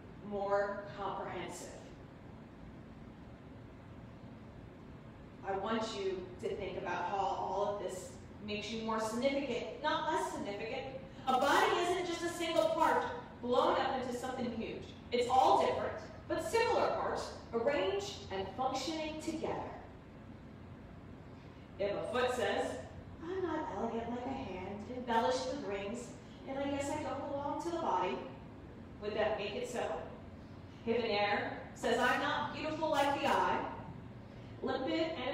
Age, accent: 30-49, American